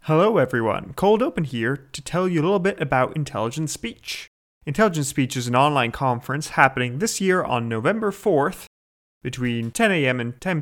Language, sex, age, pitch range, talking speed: English, male, 30-49, 120-180 Hz, 175 wpm